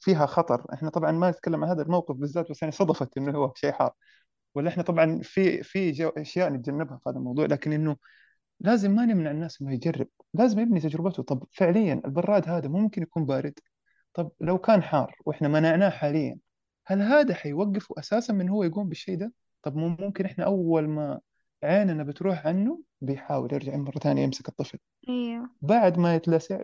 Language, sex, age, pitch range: Arabic, male, 20-39, 145-190 Hz